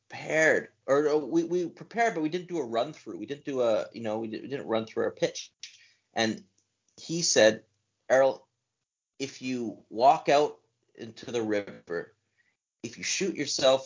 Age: 30-49